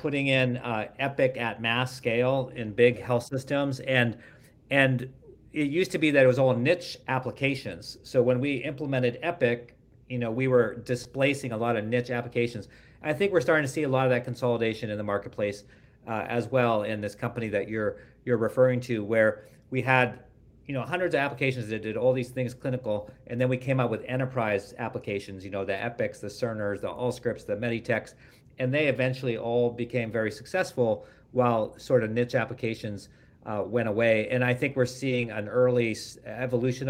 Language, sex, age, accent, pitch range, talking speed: English, male, 50-69, American, 110-130 Hz, 190 wpm